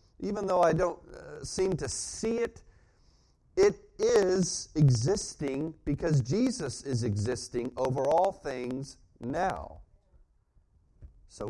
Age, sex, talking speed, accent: 40-59, male, 110 wpm, American